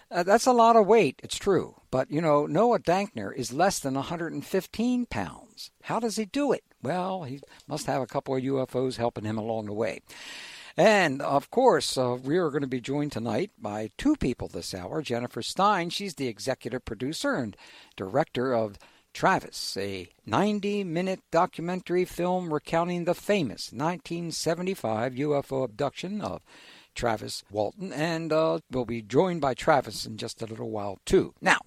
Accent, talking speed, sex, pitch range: American, 170 wpm, male, 125-200 Hz